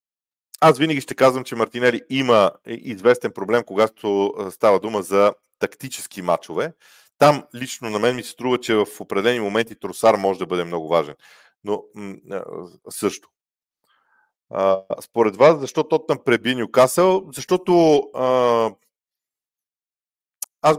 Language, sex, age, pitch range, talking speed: Bulgarian, male, 40-59, 110-155 Hz, 135 wpm